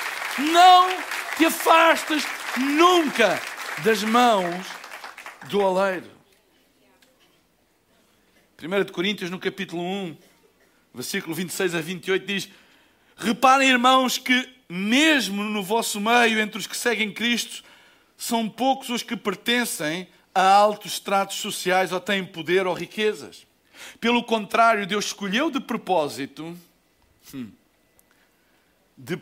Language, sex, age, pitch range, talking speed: Portuguese, male, 60-79, 190-255 Hz, 105 wpm